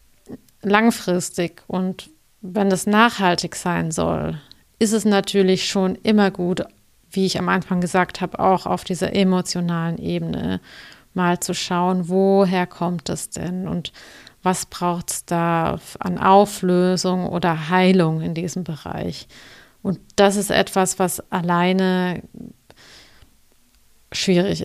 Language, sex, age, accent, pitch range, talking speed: German, female, 30-49, German, 175-190 Hz, 120 wpm